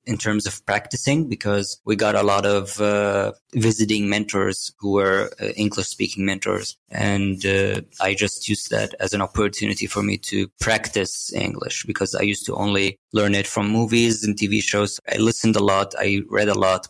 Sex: male